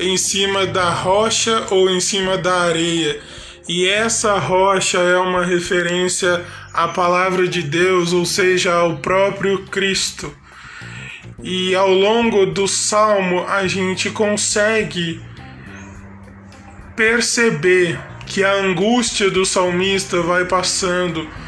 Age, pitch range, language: 20-39, 180-210 Hz, Portuguese